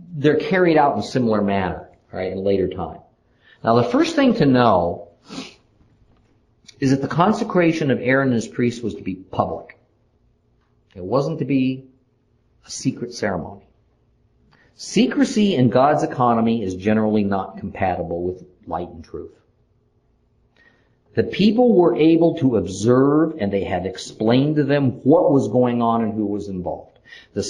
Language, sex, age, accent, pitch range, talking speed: English, male, 50-69, American, 115-165 Hz, 155 wpm